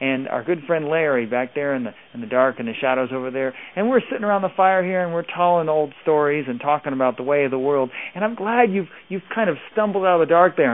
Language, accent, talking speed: English, American, 280 wpm